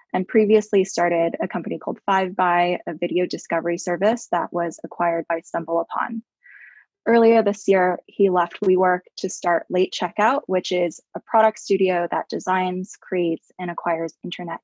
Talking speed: 155 wpm